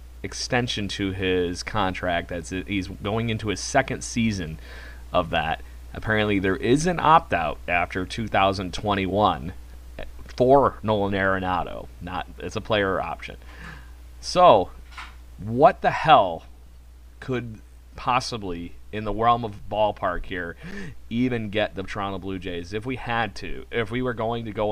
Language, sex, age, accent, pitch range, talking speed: English, male, 30-49, American, 90-110 Hz, 135 wpm